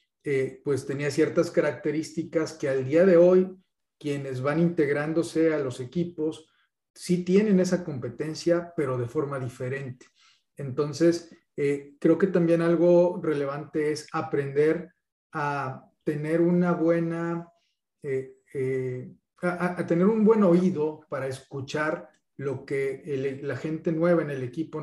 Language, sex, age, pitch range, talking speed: Spanish, male, 40-59, 135-165 Hz, 135 wpm